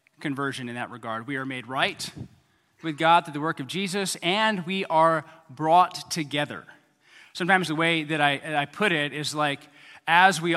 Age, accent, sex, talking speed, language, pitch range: 30-49, American, male, 180 wpm, English, 140-175 Hz